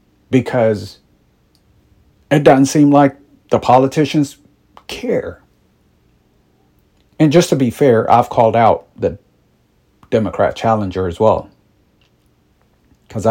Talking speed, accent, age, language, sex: 100 wpm, American, 50-69, English, male